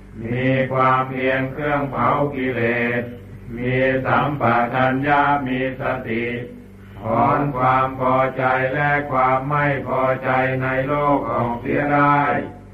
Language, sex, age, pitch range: Thai, male, 60-79, 125-145 Hz